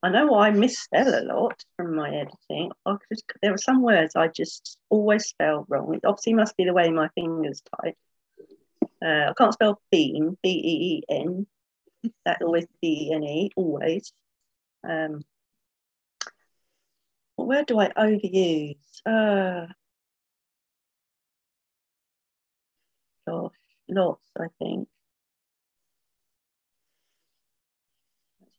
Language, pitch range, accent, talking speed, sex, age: English, 160-220 Hz, British, 105 wpm, female, 40-59